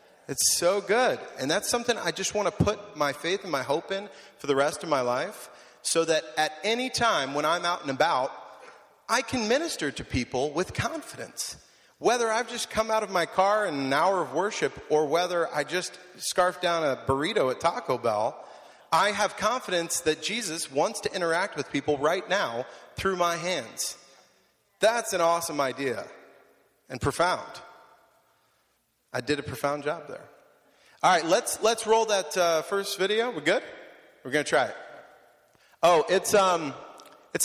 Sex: male